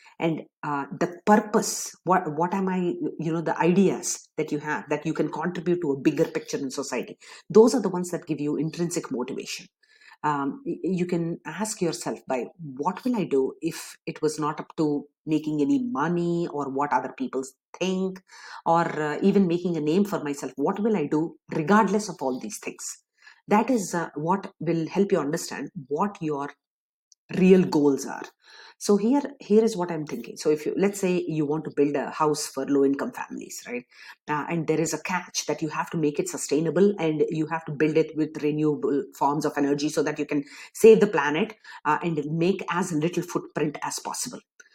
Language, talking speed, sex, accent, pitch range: English, 200 wpm, female, Indian, 150-200 Hz